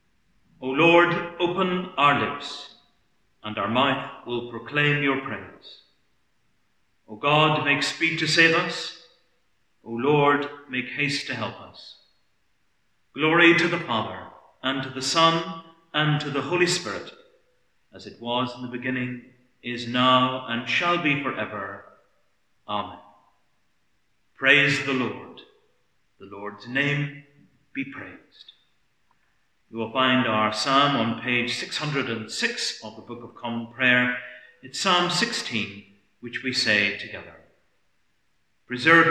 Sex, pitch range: male, 120-145 Hz